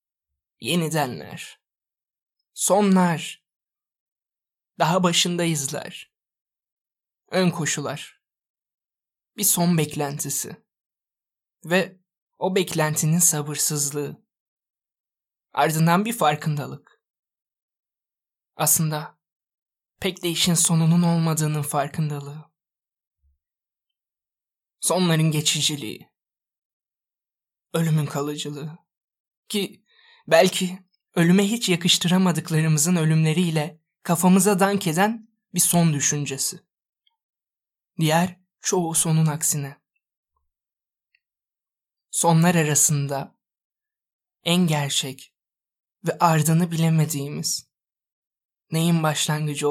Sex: male